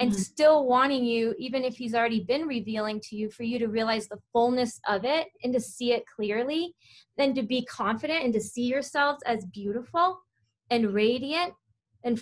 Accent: American